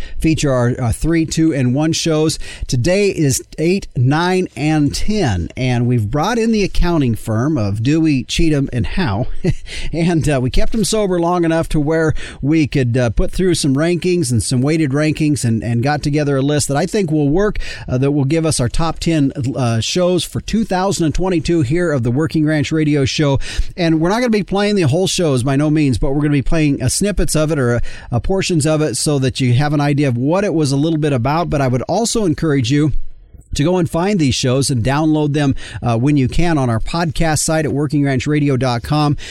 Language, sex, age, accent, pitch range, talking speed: English, male, 40-59, American, 130-165 Hz, 225 wpm